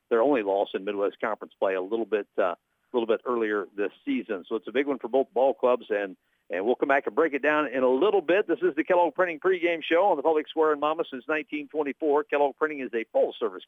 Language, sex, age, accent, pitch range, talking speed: English, male, 50-69, American, 125-175 Hz, 260 wpm